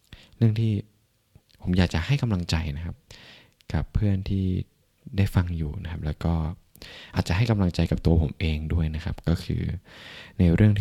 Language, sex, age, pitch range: Thai, male, 20-39, 85-105 Hz